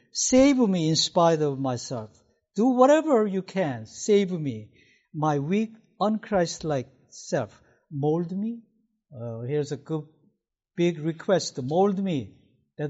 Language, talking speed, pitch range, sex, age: English, 125 wpm, 150-210 Hz, male, 60-79